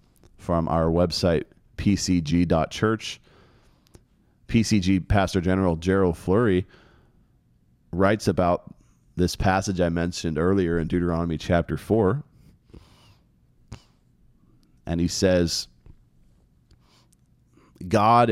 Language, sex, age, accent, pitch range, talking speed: English, male, 30-49, American, 85-110 Hz, 80 wpm